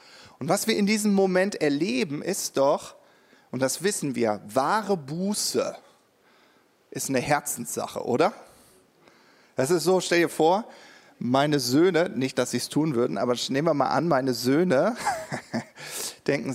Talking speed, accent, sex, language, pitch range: 150 wpm, German, male, German, 120-175 Hz